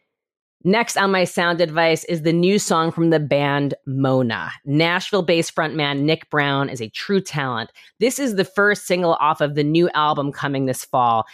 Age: 30-49